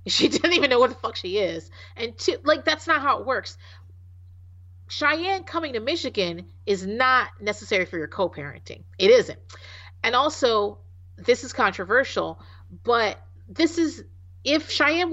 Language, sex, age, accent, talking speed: English, female, 40-59, American, 150 wpm